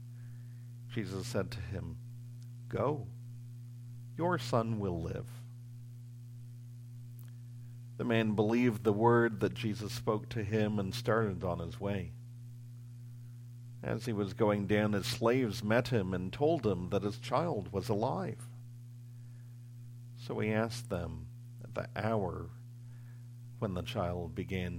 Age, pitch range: 50-69, 110-120 Hz